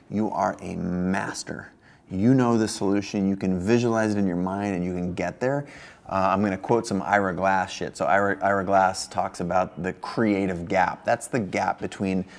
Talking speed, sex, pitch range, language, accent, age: 200 wpm, male, 95-115 Hz, English, American, 30-49